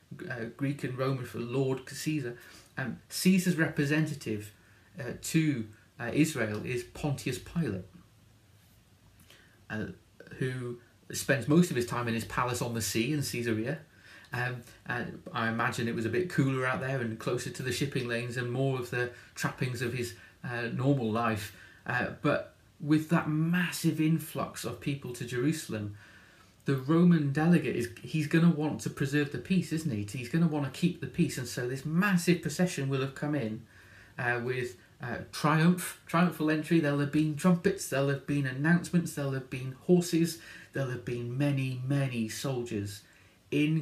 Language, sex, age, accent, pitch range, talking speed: English, male, 30-49, British, 115-155 Hz, 170 wpm